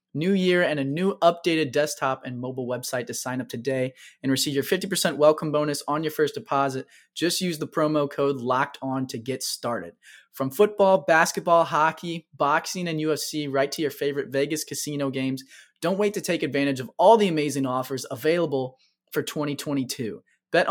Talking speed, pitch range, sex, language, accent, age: 180 wpm, 135-170 Hz, male, English, American, 20-39